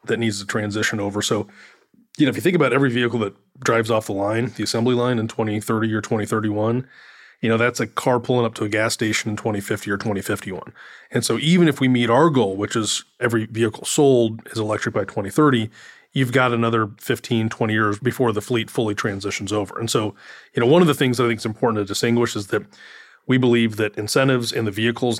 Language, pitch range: English, 105-120 Hz